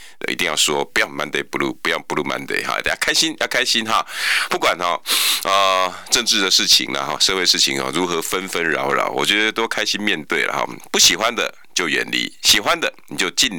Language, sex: Chinese, male